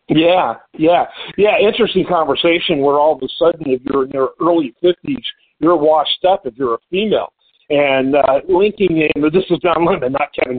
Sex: male